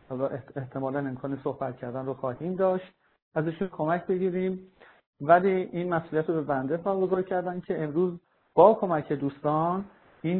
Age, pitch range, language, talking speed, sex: 50-69, 145-180 Hz, Persian, 145 wpm, male